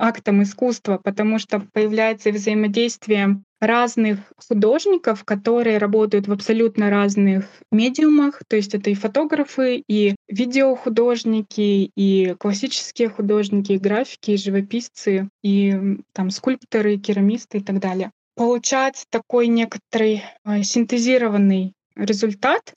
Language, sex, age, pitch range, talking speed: Russian, female, 20-39, 205-235 Hz, 110 wpm